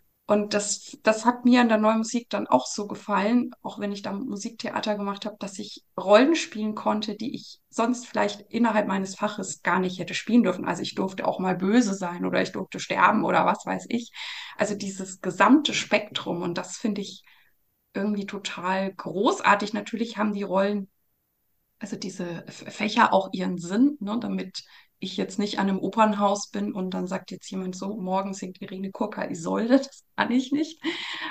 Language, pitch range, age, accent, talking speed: German, 195-225 Hz, 20-39, German, 190 wpm